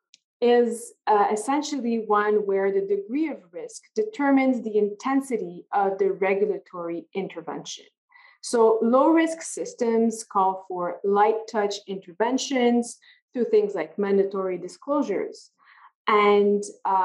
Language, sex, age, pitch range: English, female, 20-39, 190-265 Hz